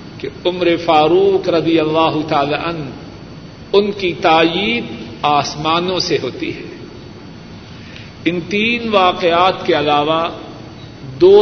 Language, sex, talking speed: Urdu, male, 100 wpm